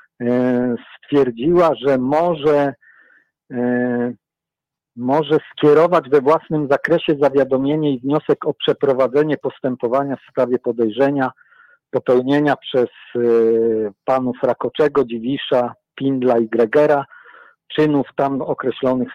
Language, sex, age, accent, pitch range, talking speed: Polish, male, 50-69, native, 125-160 Hz, 90 wpm